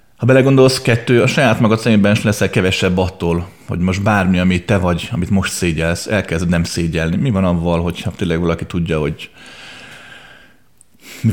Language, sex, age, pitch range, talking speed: Hungarian, male, 30-49, 85-115 Hz, 170 wpm